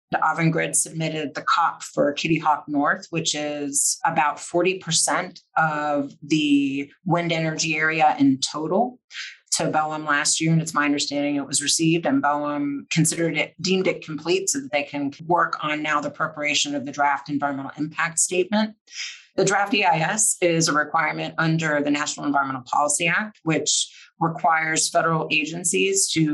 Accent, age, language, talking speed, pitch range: American, 30-49, English, 160 wpm, 145-165 Hz